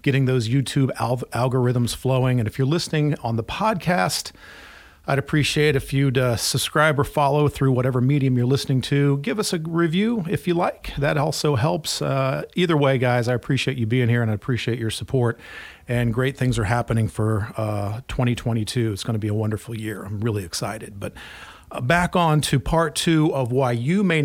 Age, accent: 40-59, American